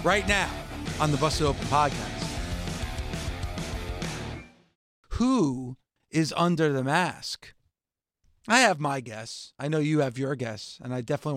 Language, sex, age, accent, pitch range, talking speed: English, male, 40-59, American, 140-200 Hz, 130 wpm